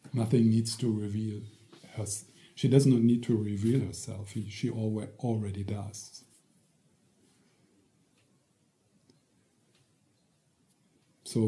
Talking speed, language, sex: 85 wpm, English, male